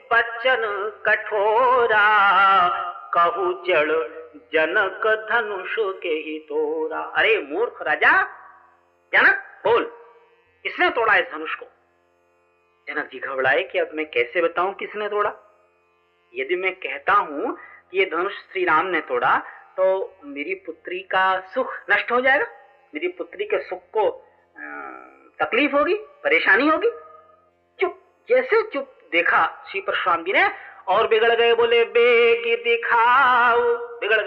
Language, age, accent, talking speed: Hindi, 40-59, native, 105 wpm